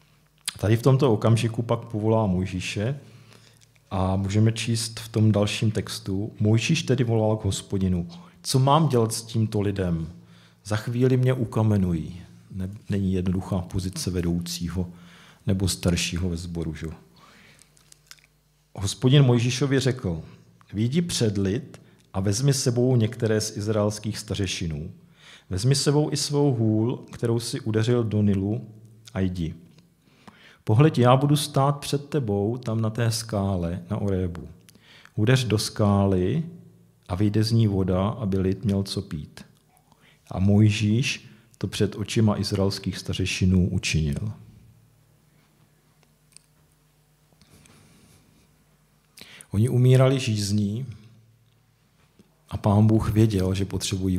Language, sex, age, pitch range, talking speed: Czech, male, 40-59, 95-130 Hz, 115 wpm